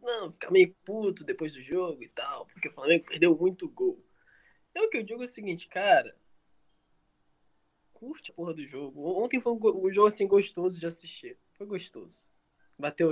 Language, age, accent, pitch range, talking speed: Portuguese, 20-39, Brazilian, 150-205 Hz, 195 wpm